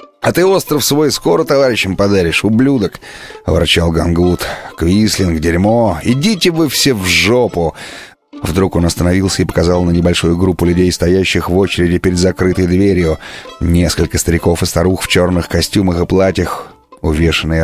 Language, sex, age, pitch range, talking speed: Russian, male, 30-49, 90-120 Hz, 145 wpm